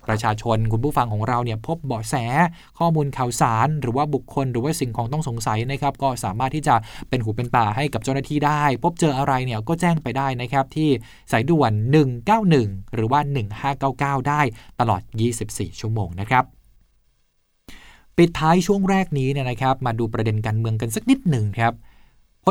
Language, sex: Thai, male